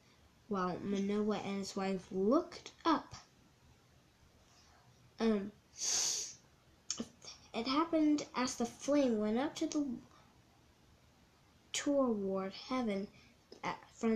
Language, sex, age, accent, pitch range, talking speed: English, female, 10-29, American, 195-280 Hz, 85 wpm